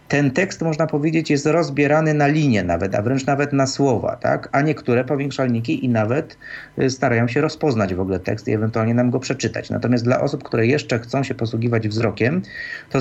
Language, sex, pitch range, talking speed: Polish, male, 115-145 Hz, 190 wpm